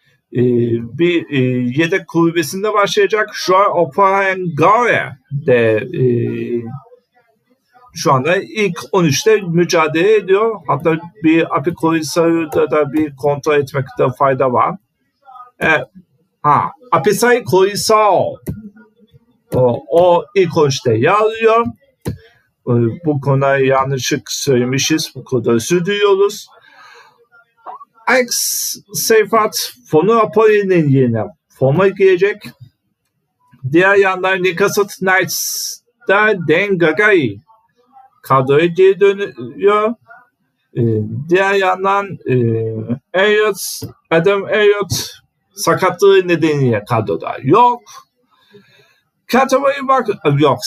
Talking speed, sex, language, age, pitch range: 80 wpm, male, Turkish, 50-69, 145-215 Hz